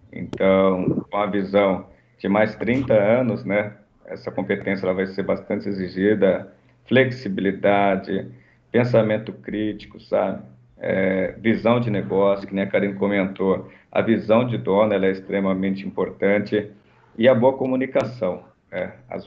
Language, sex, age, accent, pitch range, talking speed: Portuguese, male, 50-69, Brazilian, 95-110 Hz, 130 wpm